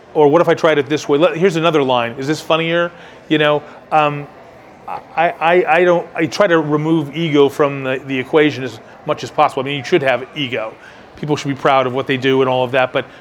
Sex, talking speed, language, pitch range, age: male, 245 wpm, English, 135-165 Hz, 30-49